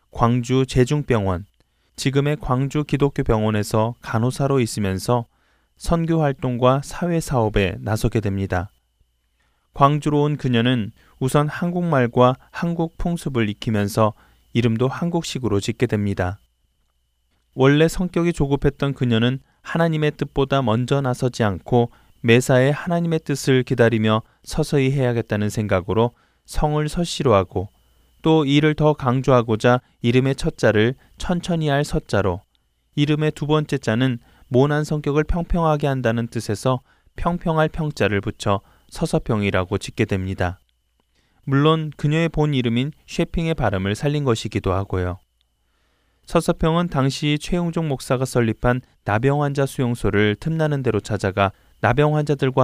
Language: Korean